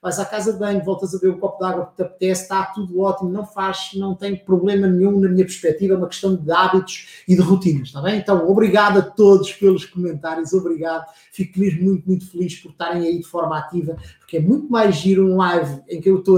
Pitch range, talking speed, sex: 160-190 Hz, 245 wpm, male